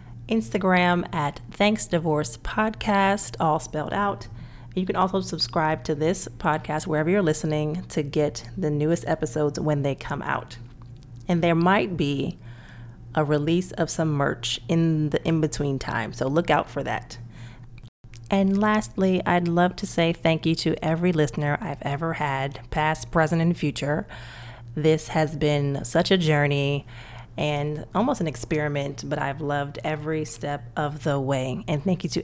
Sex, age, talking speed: female, 30-49, 155 wpm